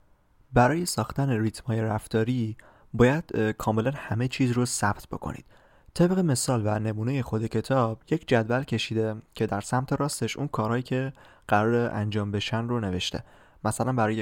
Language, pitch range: Persian, 105-130 Hz